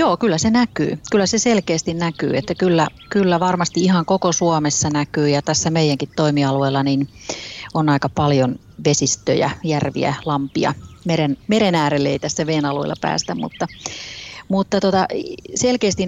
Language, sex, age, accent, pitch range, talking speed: Finnish, female, 30-49, native, 150-180 Hz, 140 wpm